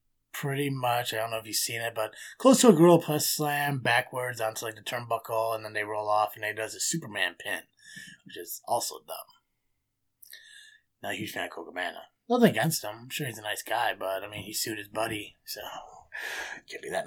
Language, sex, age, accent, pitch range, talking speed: English, male, 20-39, American, 110-165 Hz, 220 wpm